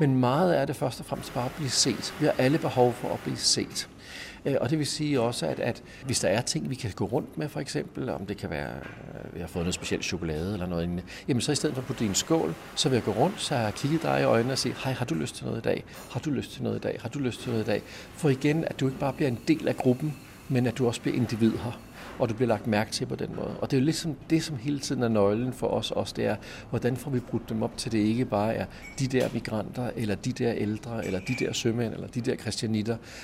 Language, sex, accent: Danish, male, native